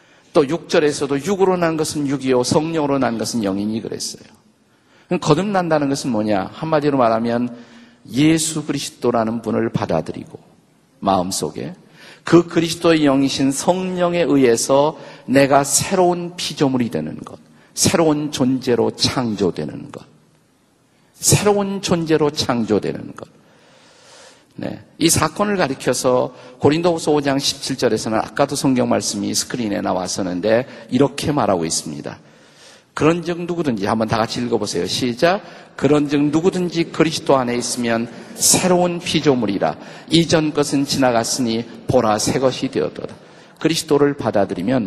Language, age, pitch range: Korean, 50-69, 120-165 Hz